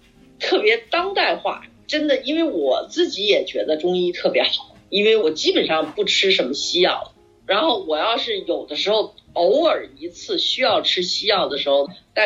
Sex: female